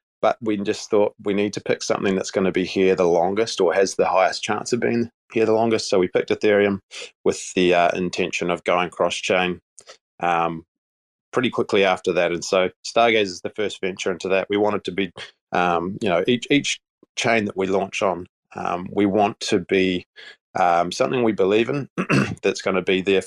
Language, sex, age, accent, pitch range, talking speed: English, male, 20-39, Australian, 95-105 Hz, 210 wpm